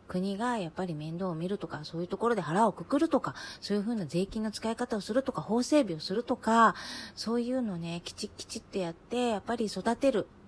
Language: Japanese